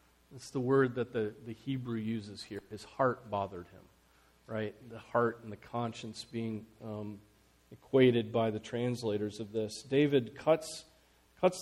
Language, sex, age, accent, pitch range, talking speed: English, male, 40-59, American, 115-155 Hz, 155 wpm